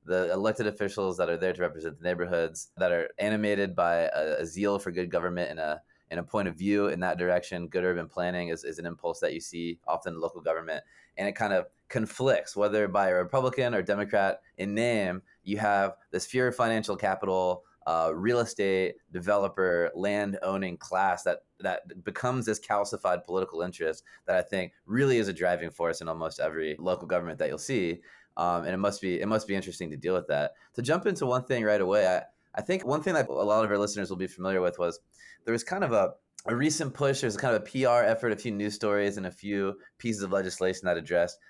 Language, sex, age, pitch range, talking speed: English, male, 20-39, 90-105 Hz, 225 wpm